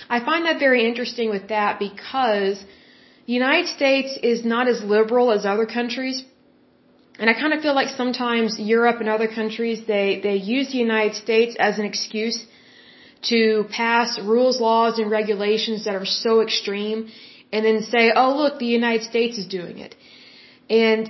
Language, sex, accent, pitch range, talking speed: Bengali, female, American, 210-245 Hz, 170 wpm